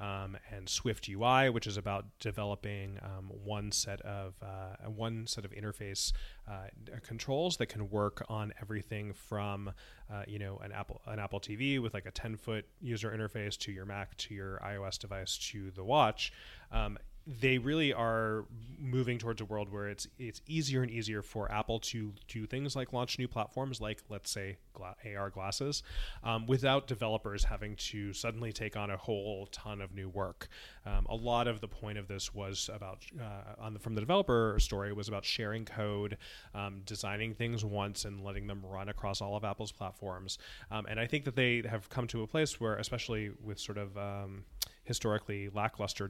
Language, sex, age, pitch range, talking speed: English, male, 20-39, 100-115 Hz, 185 wpm